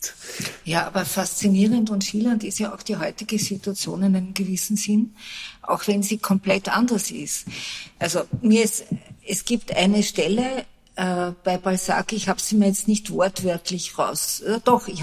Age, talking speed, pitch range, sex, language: 50-69, 170 wpm, 185-220 Hz, female, German